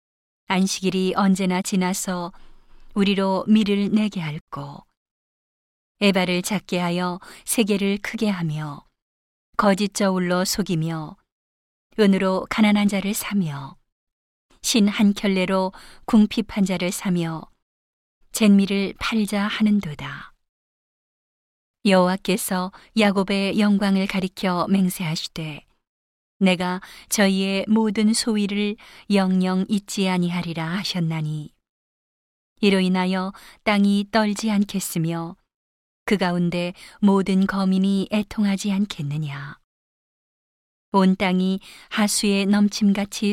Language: Korean